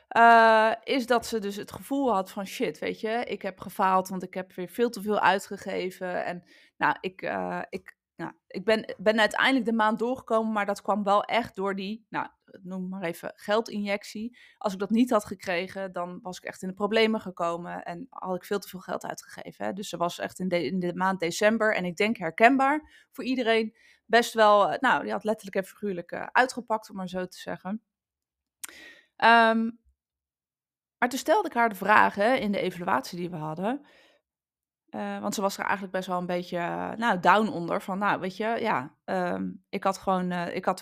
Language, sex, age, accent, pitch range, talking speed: Dutch, female, 20-39, Dutch, 185-230 Hz, 210 wpm